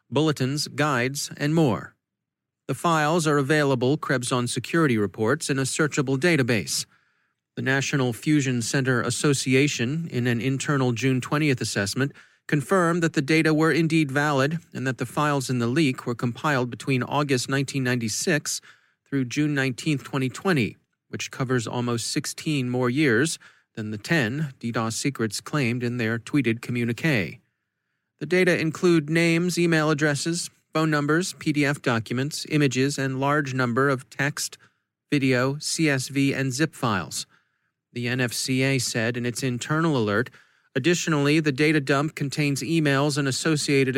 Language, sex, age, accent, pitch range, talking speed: English, male, 30-49, American, 125-150 Hz, 140 wpm